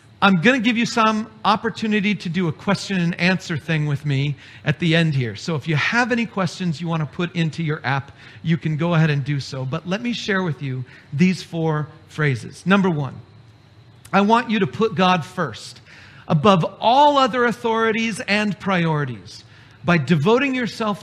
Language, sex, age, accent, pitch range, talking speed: English, male, 40-59, American, 120-190 Hz, 190 wpm